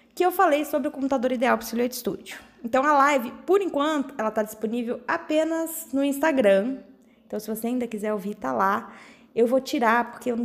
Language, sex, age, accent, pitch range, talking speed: Portuguese, female, 20-39, Brazilian, 230-290 Hz, 205 wpm